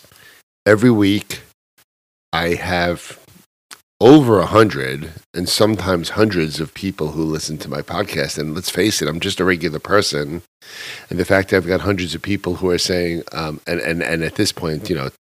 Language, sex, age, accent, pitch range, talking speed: English, male, 50-69, American, 85-100 Hz, 185 wpm